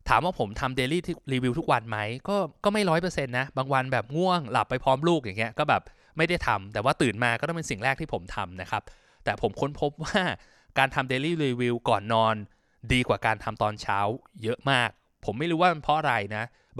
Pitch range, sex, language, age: 115-165 Hz, male, Thai, 20-39